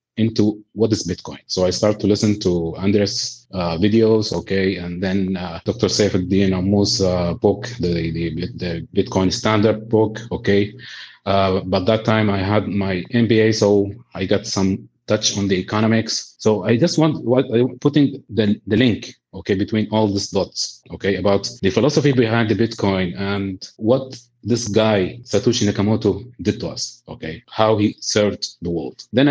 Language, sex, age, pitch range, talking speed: English, male, 30-49, 95-115 Hz, 170 wpm